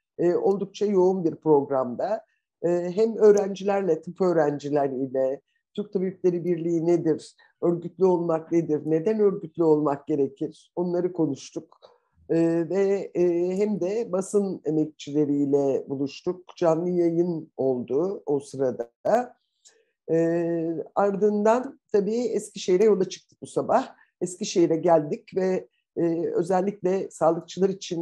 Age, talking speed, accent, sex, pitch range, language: 50-69, 100 wpm, native, male, 160-205 Hz, Turkish